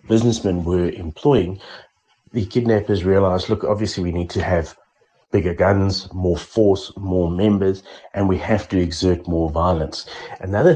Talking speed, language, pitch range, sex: 145 wpm, English, 85-100 Hz, male